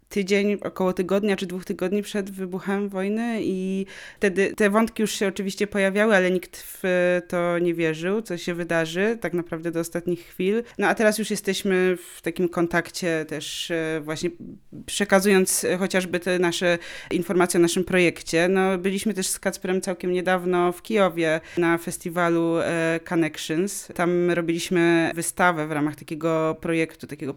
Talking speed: 150 wpm